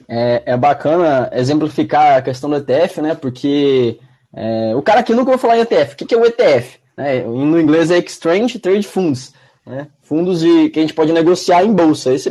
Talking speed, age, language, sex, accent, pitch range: 200 wpm, 20-39, Portuguese, male, Brazilian, 150-215 Hz